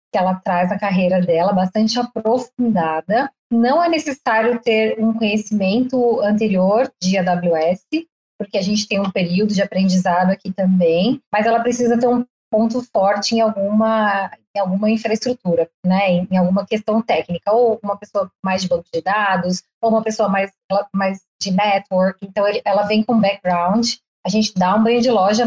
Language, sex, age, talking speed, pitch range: Portuguese, female, 20-39, 170 wpm, 185-235 Hz